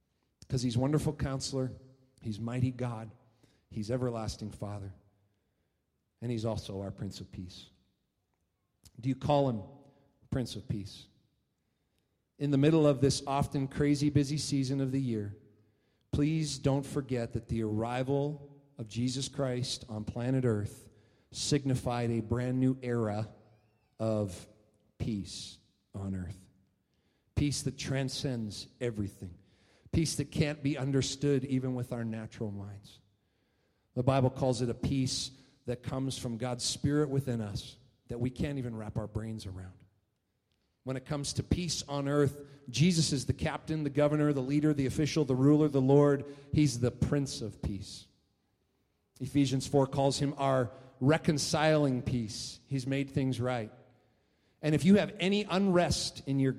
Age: 40-59